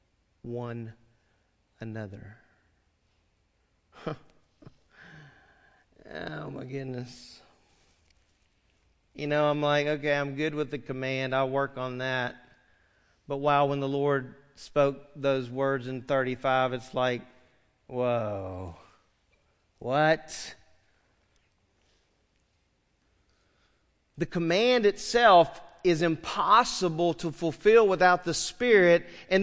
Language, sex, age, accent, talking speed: English, male, 40-59, American, 90 wpm